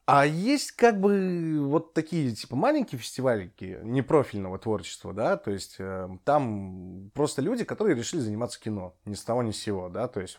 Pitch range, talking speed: 100-150 Hz, 175 wpm